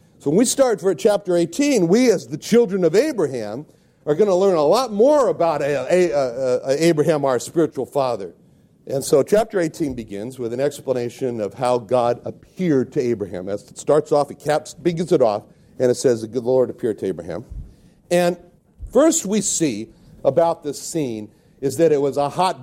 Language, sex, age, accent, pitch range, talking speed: English, male, 60-79, American, 135-190 Hz, 185 wpm